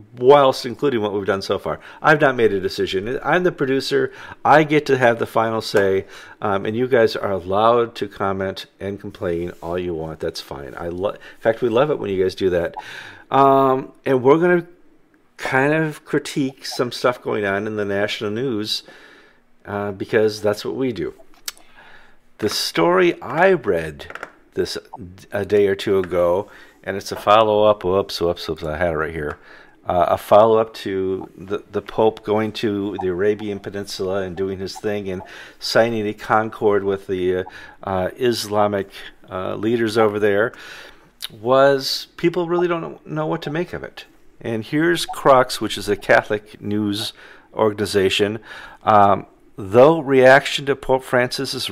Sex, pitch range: male, 100-140 Hz